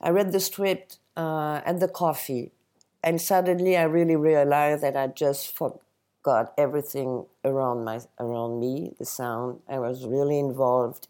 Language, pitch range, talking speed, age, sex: English, 130-165 Hz, 145 wpm, 50-69, female